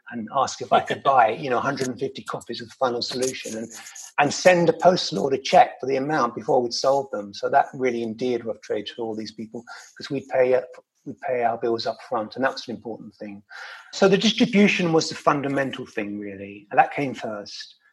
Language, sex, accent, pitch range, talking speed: English, male, British, 115-165 Hz, 215 wpm